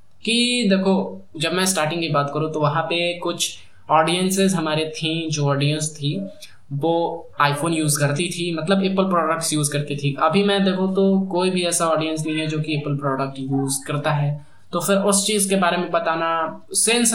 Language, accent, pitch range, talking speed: Hindi, native, 145-190 Hz, 190 wpm